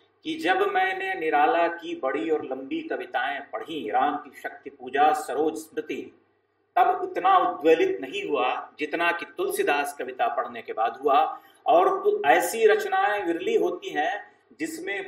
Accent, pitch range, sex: Indian, 360-395 Hz, male